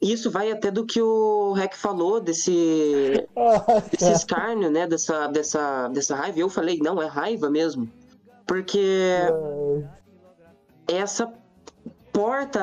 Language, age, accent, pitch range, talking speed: Portuguese, 20-39, Brazilian, 160-205 Hz, 125 wpm